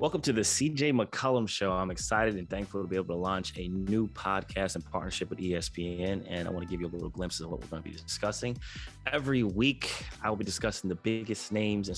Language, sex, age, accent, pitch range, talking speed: English, male, 20-39, American, 85-100 Hz, 240 wpm